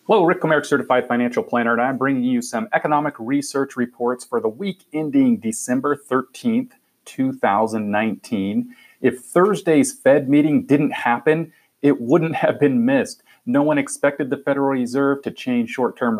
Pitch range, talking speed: 115-165 Hz, 150 wpm